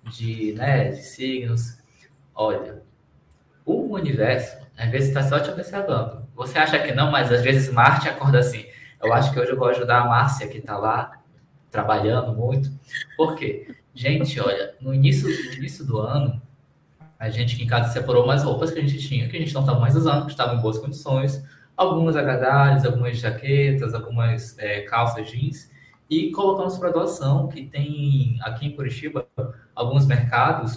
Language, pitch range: Portuguese, 120-145 Hz